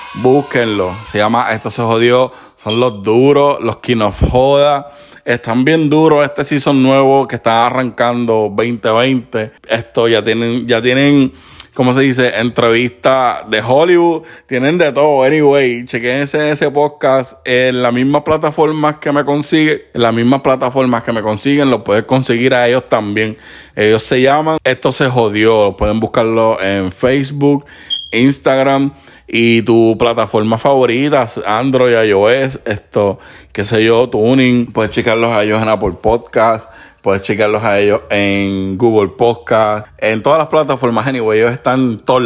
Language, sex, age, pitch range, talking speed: Spanish, male, 30-49, 110-135 Hz, 150 wpm